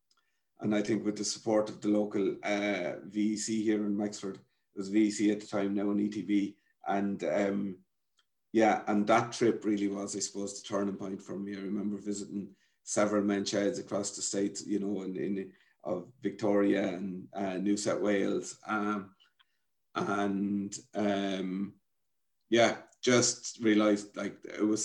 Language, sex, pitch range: English, male, 100-105 Hz